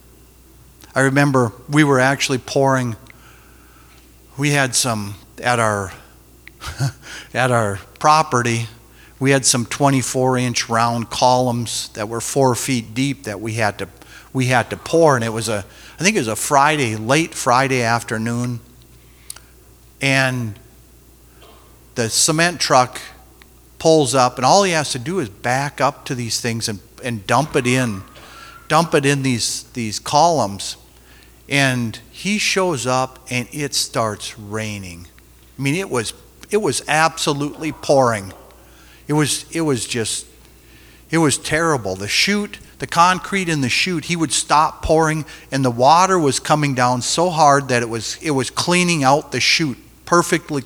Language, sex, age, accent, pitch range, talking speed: English, male, 50-69, American, 110-145 Hz, 150 wpm